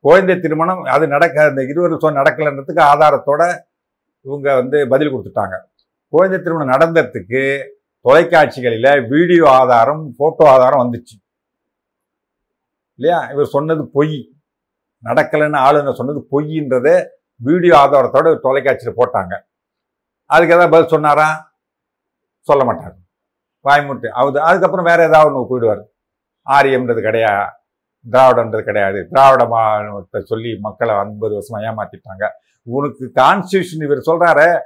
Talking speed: 105 wpm